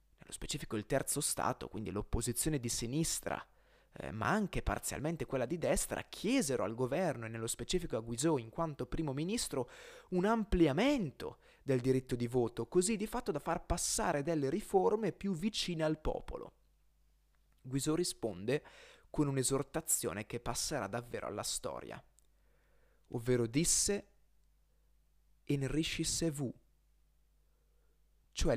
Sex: male